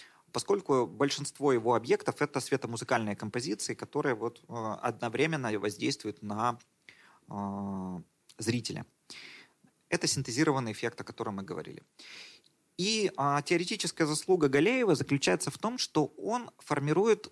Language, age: Russian, 30-49